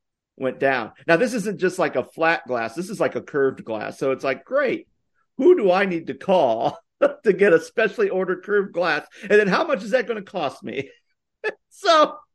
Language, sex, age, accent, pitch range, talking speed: English, male, 50-69, American, 125-185 Hz, 215 wpm